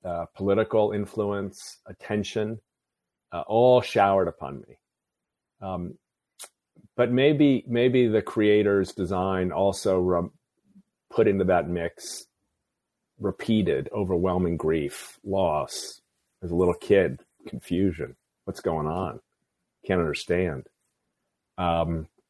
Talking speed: 100 wpm